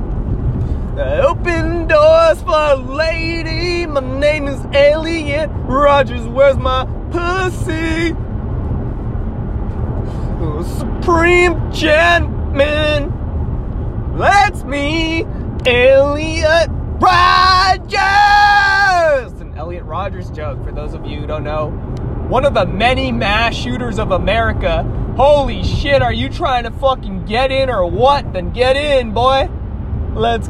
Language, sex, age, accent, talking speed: English, male, 20-39, American, 110 wpm